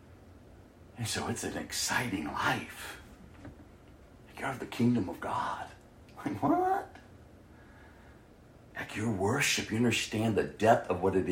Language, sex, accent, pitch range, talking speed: English, male, American, 80-115 Hz, 135 wpm